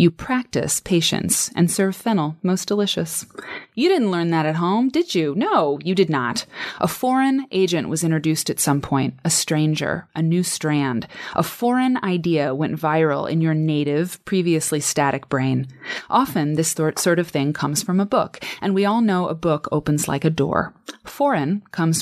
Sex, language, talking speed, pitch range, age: female, English, 180 wpm, 155-200 Hz, 30-49